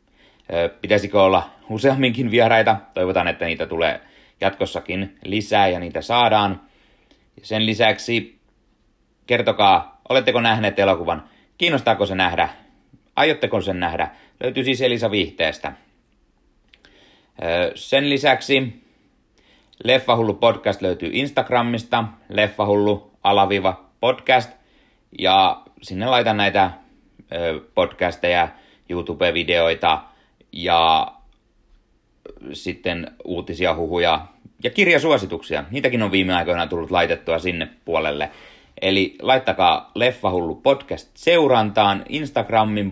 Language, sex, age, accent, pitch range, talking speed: Finnish, male, 30-49, native, 95-125 Hz, 90 wpm